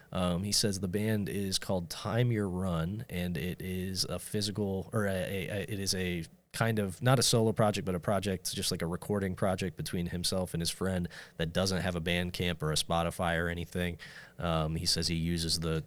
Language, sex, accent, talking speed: English, male, American, 220 wpm